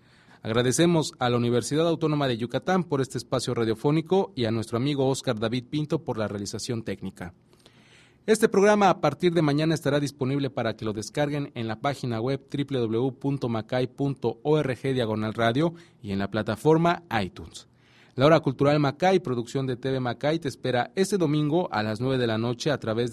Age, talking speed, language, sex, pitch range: 30-49, 165 wpm, English, male, 115-150 Hz